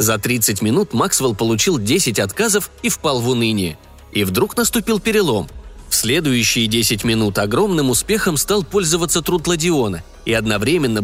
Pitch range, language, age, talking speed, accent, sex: 110-175 Hz, Russian, 20-39, 145 wpm, native, male